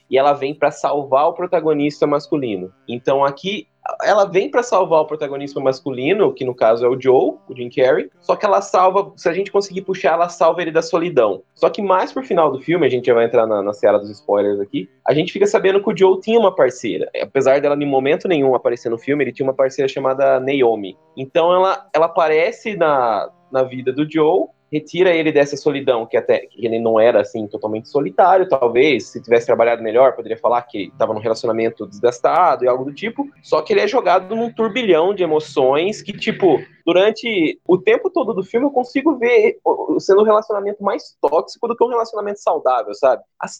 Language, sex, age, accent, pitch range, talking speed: Portuguese, male, 20-39, Brazilian, 135-210 Hz, 210 wpm